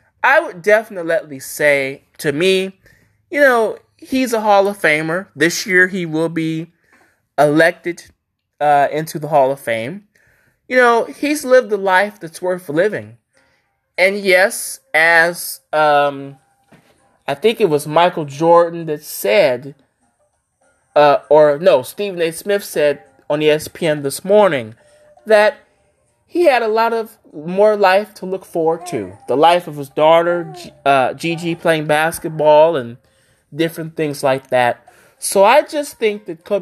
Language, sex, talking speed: English, male, 145 wpm